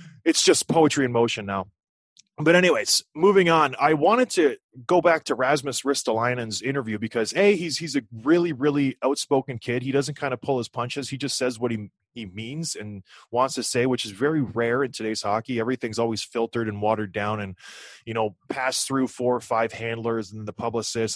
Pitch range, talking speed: 120-155 Hz, 200 wpm